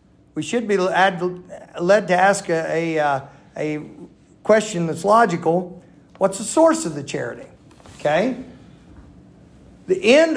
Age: 50-69